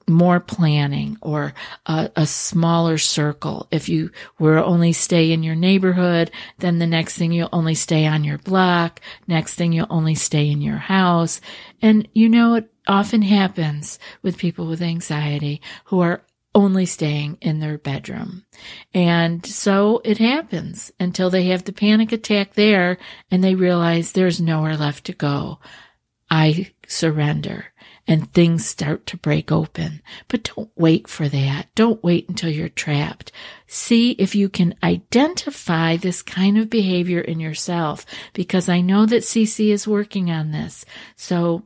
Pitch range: 160-195 Hz